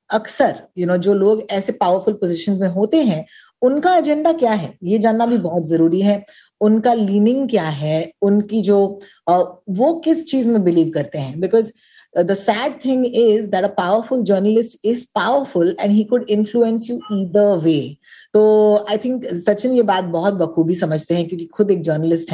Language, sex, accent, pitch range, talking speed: Hindi, female, native, 175-230 Hz, 175 wpm